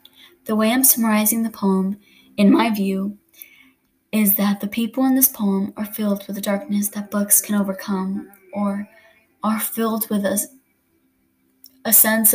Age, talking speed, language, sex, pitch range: 20-39, 155 wpm, English, female, 200-225 Hz